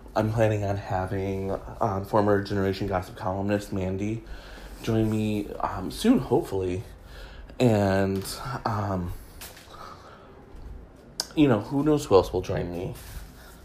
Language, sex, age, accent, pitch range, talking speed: English, male, 30-49, American, 95-120 Hz, 115 wpm